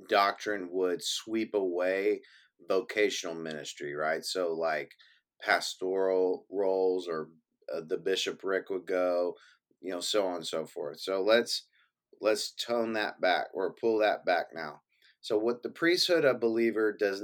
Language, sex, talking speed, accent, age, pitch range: English, male, 145 wpm, American, 30-49, 95-125 Hz